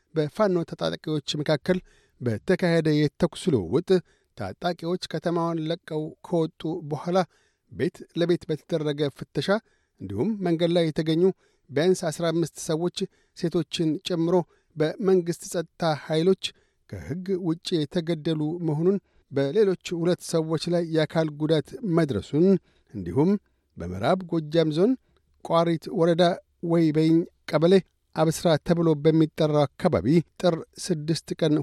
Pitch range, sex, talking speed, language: 155-175 Hz, male, 100 wpm, Amharic